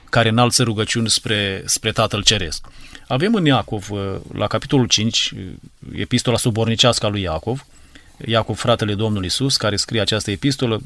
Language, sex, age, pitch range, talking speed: Romanian, male, 30-49, 110-140 Hz, 145 wpm